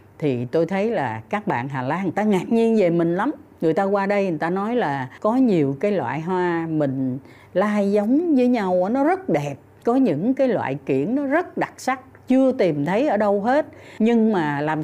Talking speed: 220 wpm